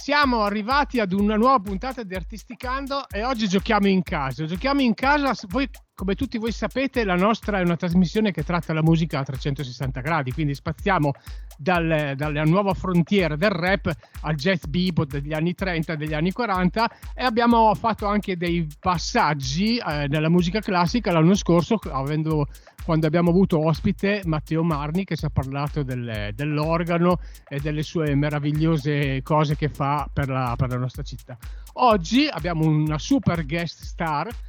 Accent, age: native, 40-59